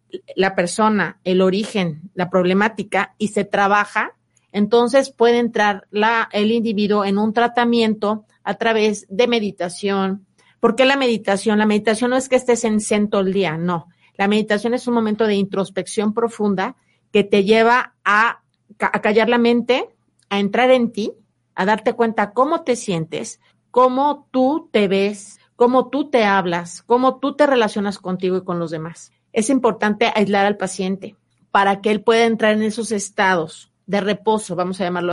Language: Spanish